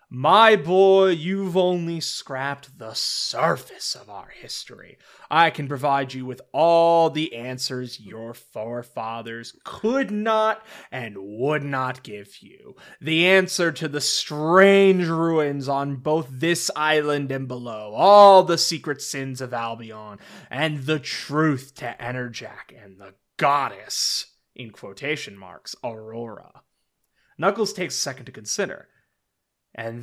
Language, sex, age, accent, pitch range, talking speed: English, male, 20-39, American, 120-180 Hz, 130 wpm